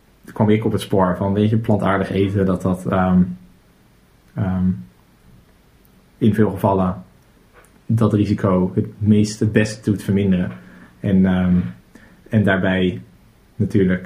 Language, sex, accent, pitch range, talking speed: Dutch, male, Dutch, 95-110 Hz, 130 wpm